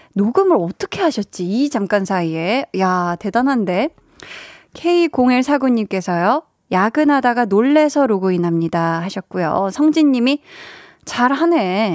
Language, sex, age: Korean, female, 20-39